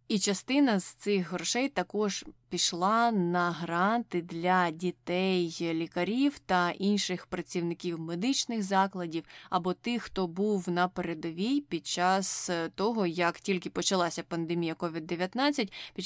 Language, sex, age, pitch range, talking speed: Ukrainian, female, 20-39, 170-200 Hz, 120 wpm